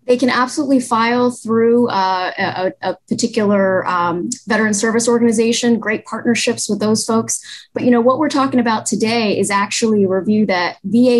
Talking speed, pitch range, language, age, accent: 170 wpm, 190-225 Hz, English, 20-39, American